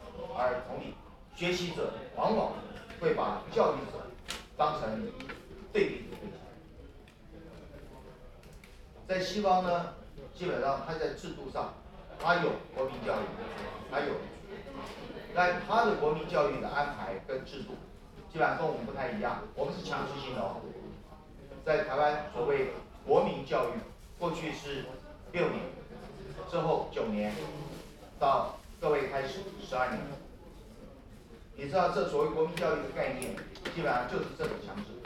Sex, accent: male, native